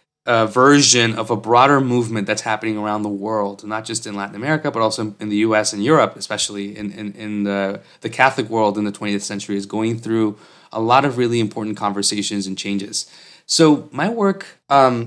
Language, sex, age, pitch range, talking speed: English, male, 20-39, 105-125 Hz, 200 wpm